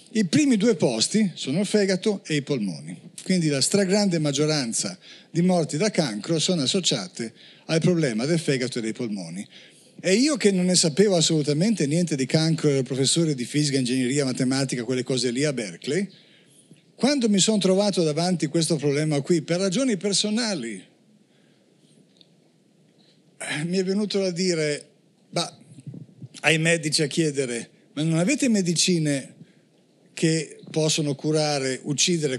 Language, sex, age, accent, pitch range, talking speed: Italian, male, 50-69, native, 145-195 Hz, 145 wpm